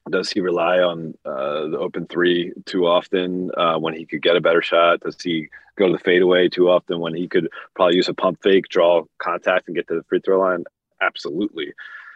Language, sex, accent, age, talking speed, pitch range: English, male, American, 30-49, 215 wpm, 85-120 Hz